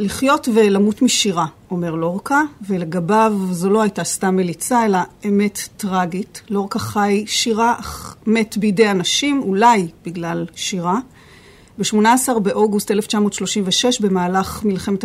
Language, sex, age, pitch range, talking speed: Hebrew, female, 40-59, 185-220 Hz, 115 wpm